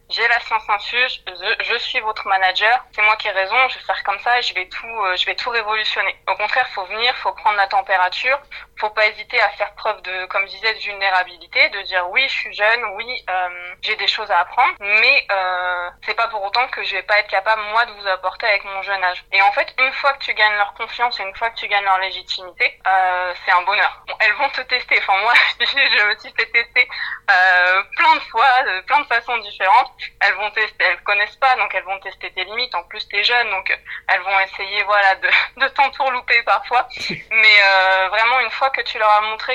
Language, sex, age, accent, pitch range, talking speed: French, female, 20-39, French, 190-235 Hz, 240 wpm